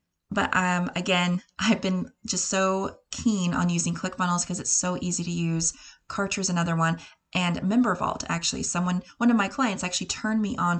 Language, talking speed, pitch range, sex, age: English, 185 wpm, 165-190 Hz, female, 20-39